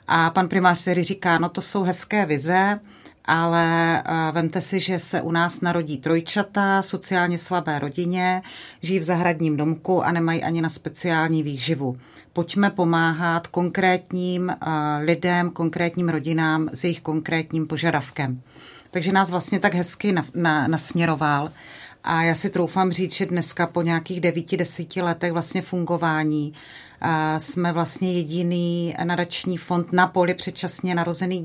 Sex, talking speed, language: female, 135 wpm, Czech